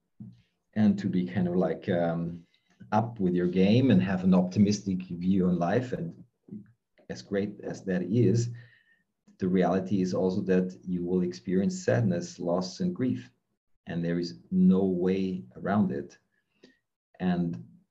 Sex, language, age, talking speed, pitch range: male, English, 40-59, 145 wpm, 90-120 Hz